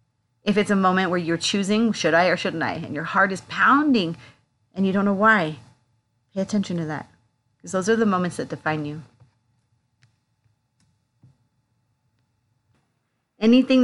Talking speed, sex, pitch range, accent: 150 wpm, female, 155-210 Hz, American